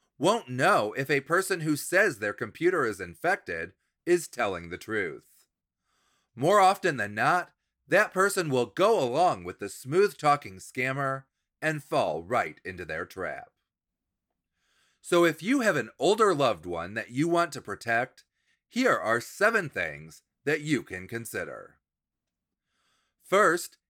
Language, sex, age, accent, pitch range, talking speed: English, male, 30-49, American, 120-175 Hz, 145 wpm